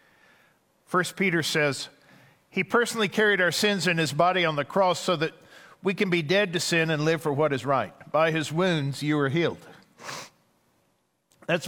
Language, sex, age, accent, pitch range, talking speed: English, male, 50-69, American, 140-175 Hz, 180 wpm